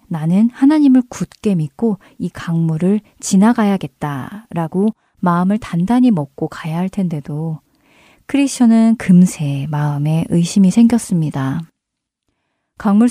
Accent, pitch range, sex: native, 165-215 Hz, female